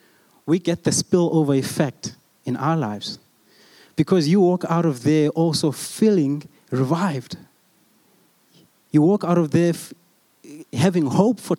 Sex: male